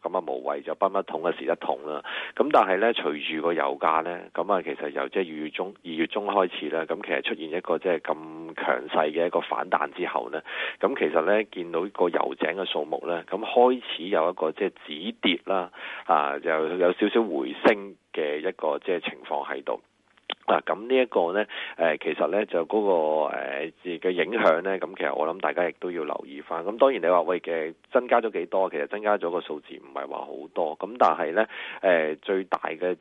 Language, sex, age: Chinese, male, 30-49